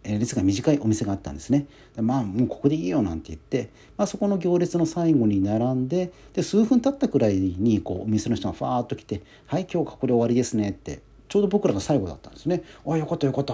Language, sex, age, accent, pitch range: Japanese, male, 40-59, native, 100-145 Hz